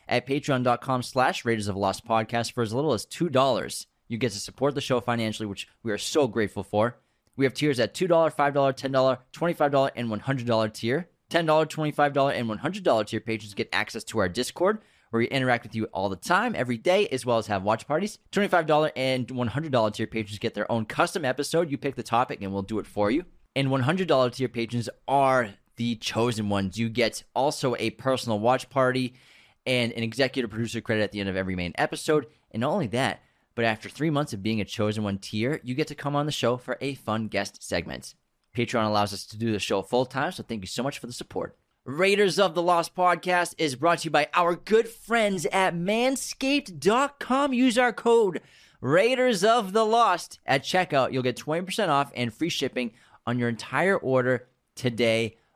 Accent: American